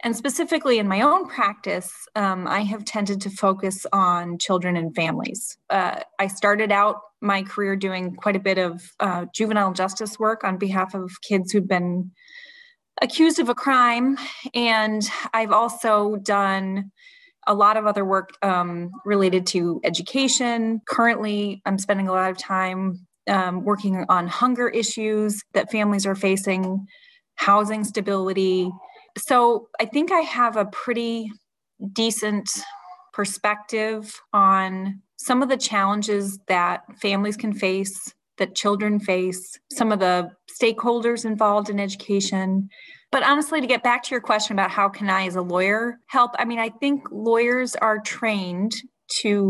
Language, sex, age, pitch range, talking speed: English, female, 30-49, 195-235 Hz, 150 wpm